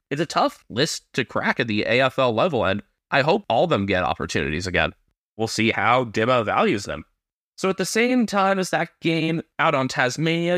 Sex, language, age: male, English, 30-49